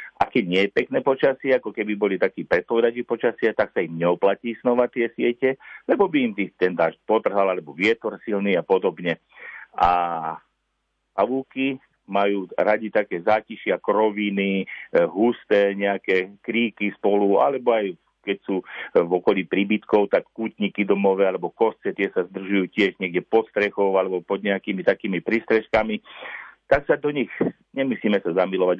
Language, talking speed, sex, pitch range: Slovak, 150 wpm, male, 95-115 Hz